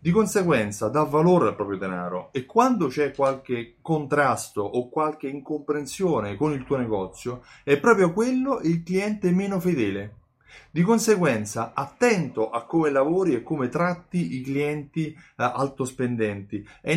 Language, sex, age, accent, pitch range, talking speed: Italian, male, 30-49, native, 115-160 Hz, 140 wpm